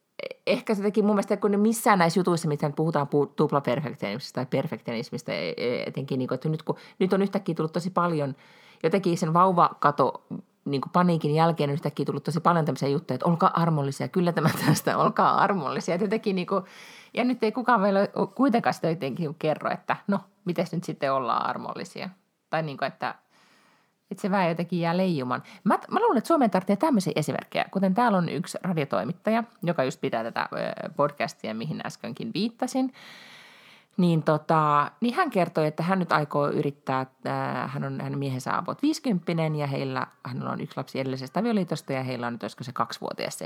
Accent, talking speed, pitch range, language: native, 175 wpm, 145-200 Hz, Finnish